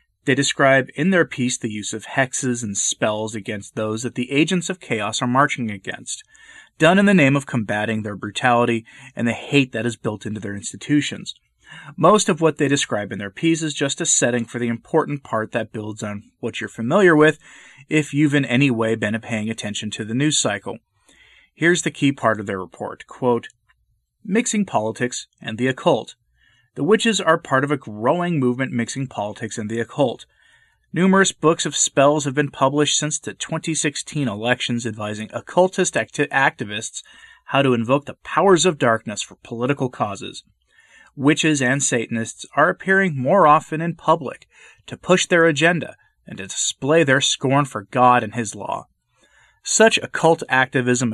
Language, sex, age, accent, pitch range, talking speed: English, male, 30-49, American, 115-155 Hz, 175 wpm